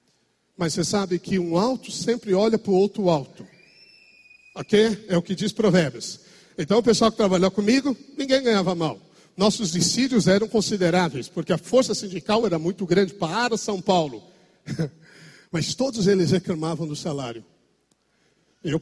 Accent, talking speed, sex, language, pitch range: Brazilian, 155 wpm, male, Portuguese, 175-215 Hz